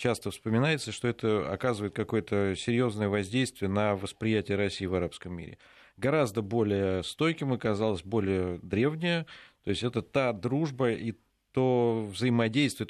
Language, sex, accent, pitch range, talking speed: Russian, male, native, 95-115 Hz, 130 wpm